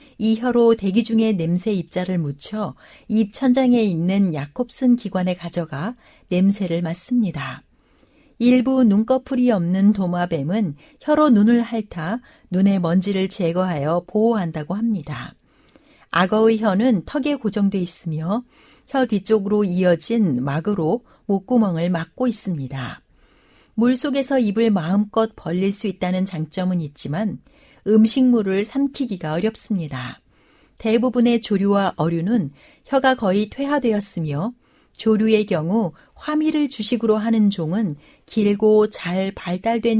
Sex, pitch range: female, 180-235 Hz